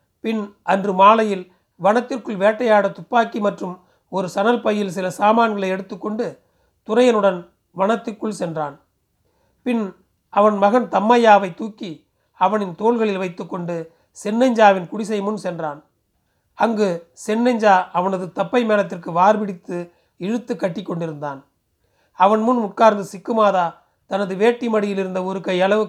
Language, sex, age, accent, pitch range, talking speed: Tamil, male, 40-59, native, 180-220 Hz, 110 wpm